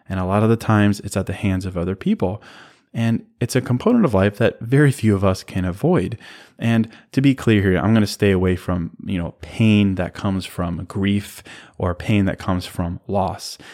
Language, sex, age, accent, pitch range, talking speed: English, male, 20-39, American, 95-115 Hz, 220 wpm